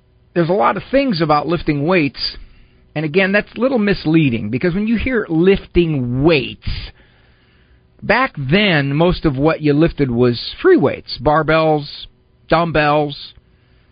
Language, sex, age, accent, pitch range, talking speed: English, male, 50-69, American, 120-190 Hz, 140 wpm